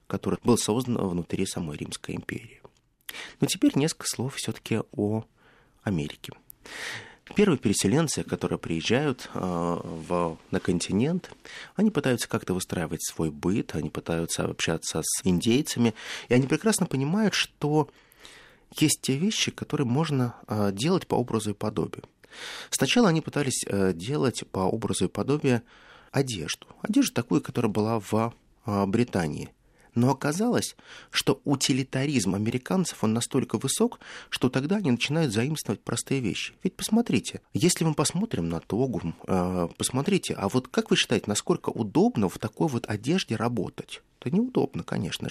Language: Russian